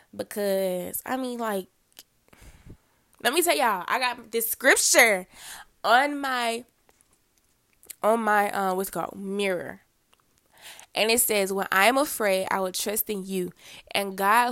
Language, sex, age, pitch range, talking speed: English, female, 20-39, 185-230 Hz, 145 wpm